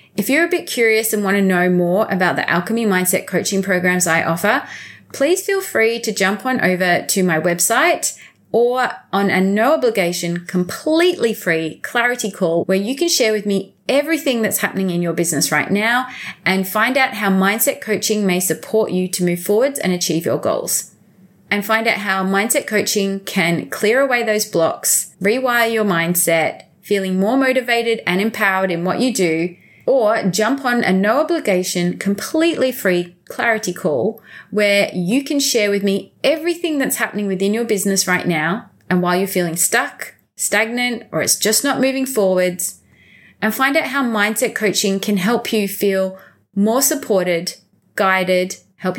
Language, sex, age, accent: English, female, 30-49, Australian